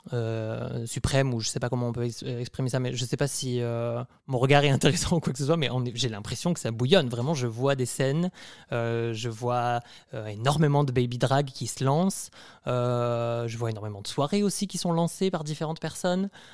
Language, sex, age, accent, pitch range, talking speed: French, male, 20-39, French, 115-145 Hz, 230 wpm